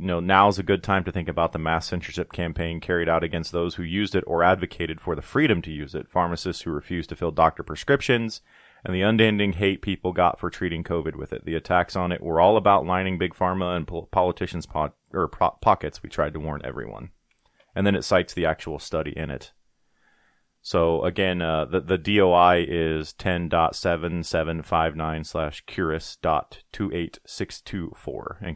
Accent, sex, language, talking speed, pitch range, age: American, male, English, 180 wpm, 80-90 Hz, 30-49